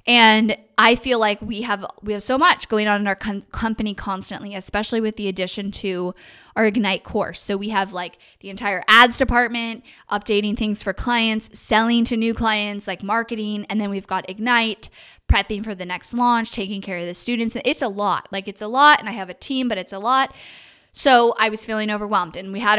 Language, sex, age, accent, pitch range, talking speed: English, female, 10-29, American, 200-245 Hz, 215 wpm